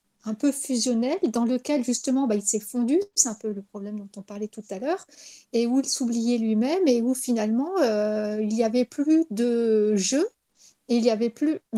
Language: French